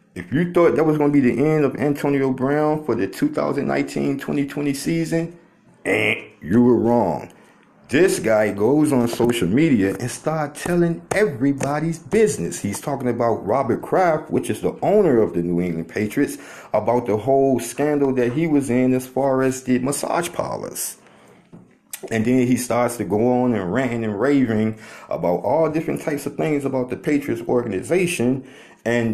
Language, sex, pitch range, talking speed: English, male, 110-145 Hz, 170 wpm